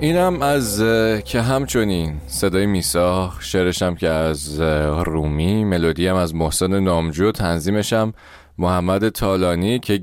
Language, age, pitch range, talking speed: Persian, 30-49, 80-120 Hz, 110 wpm